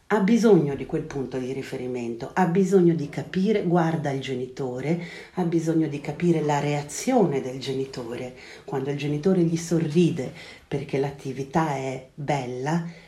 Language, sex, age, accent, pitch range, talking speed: Italian, female, 40-59, native, 135-180 Hz, 140 wpm